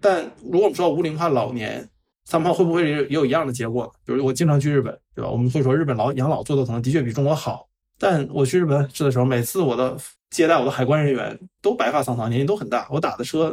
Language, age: Chinese, 20-39